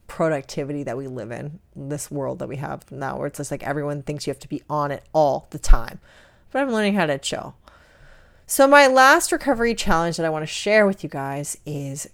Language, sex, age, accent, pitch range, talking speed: English, female, 30-49, American, 150-205 Hz, 225 wpm